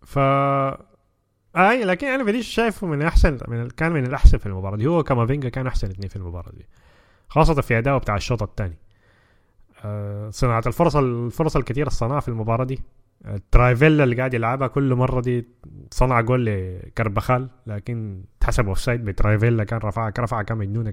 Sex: male